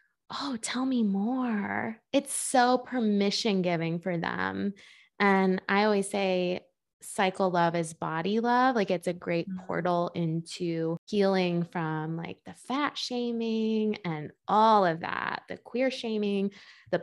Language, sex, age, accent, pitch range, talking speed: English, female, 20-39, American, 180-230 Hz, 135 wpm